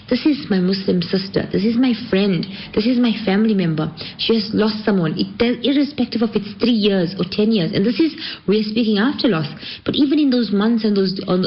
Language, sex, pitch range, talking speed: English, female, 180-240 Hz, 215 wpm